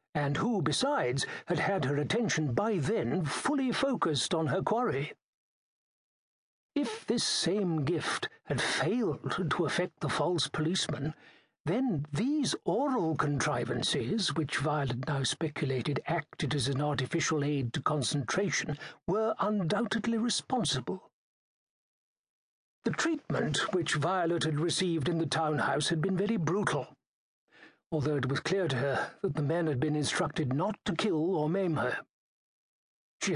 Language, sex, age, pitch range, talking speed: English, male, 60-79, 150-205 Hz, 135 wpm